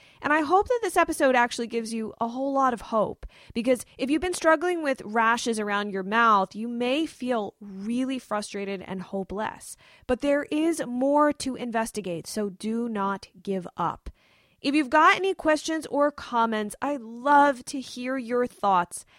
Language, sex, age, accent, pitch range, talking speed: English, female, 20-39, American, 215-285 Hz, 170 wpm